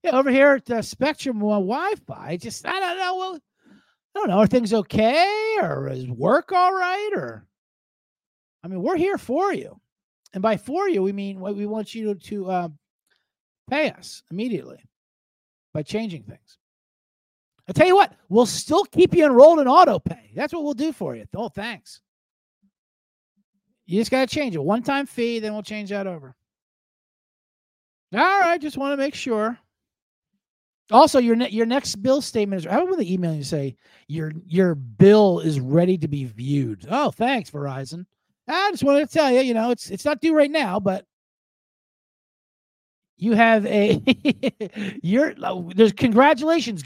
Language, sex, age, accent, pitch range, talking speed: English, male, 50-69, American, 195-300 Hz, 175 wpm